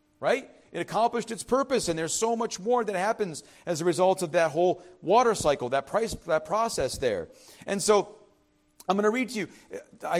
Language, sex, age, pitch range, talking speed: English, male, 40-59, 165-230 Hz, 205 wpm